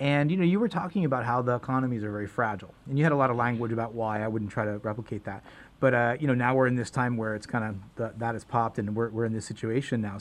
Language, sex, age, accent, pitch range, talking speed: English, male, 30-49, American, 115-145 Hz, 305 wpm